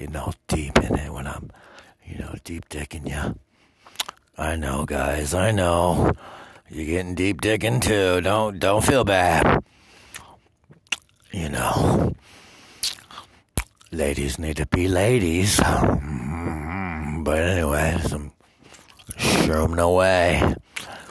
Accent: American